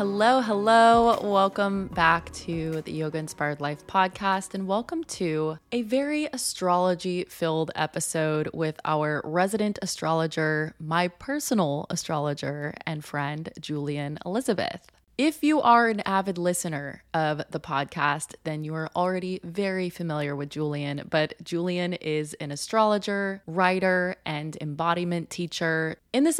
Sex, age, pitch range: female, 20-39, 155-200 Hz